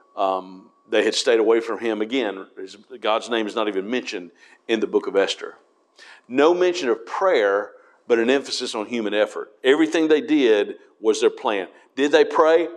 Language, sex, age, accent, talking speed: English, male, 50-69, American, 180 wpm